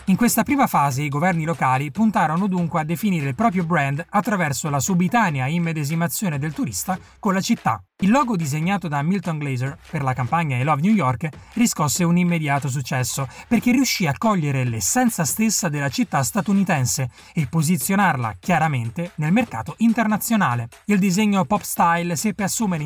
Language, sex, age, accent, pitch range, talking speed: Italian, male, 30-49, native, 140-195 Hz, 160 wpm